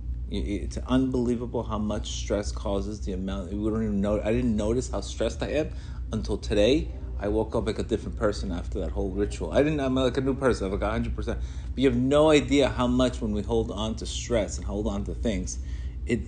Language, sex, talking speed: English, male, 230 wpm